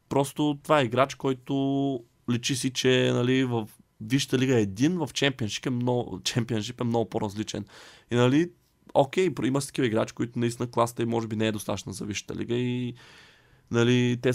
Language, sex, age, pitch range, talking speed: Bulgarian, male, 20-39, 105-125 Hz, 180 wpm